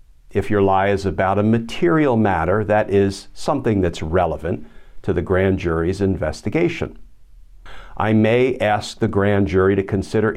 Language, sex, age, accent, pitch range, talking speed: English, male, 50-69, American, 95-120 Hz, 150 wpm